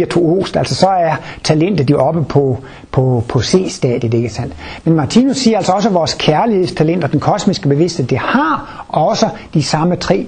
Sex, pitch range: male, 135-185 Hz